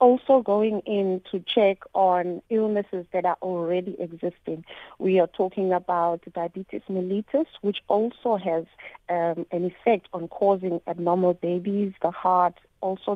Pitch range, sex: 175-205 Hz, female